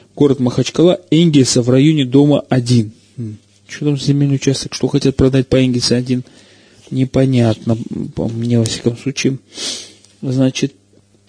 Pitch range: 125-160 Hz